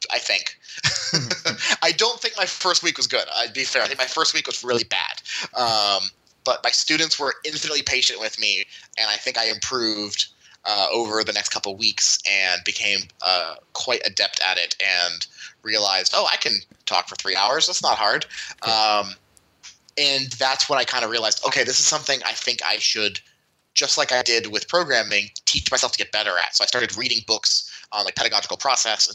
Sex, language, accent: male, English, American